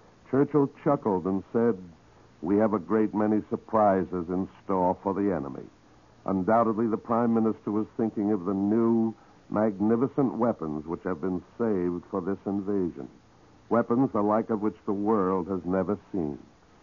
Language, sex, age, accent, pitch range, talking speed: English, male, 60-79, American, 95-115 Hz, 155 wpm